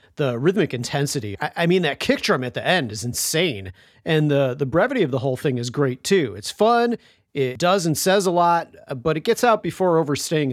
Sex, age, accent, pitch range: male, 40-59, American, 140-200 Hz